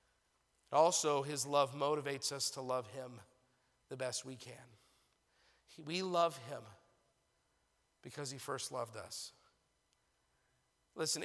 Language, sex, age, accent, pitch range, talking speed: English, male, 40-59, American, 125-145 Hz, 110 wpm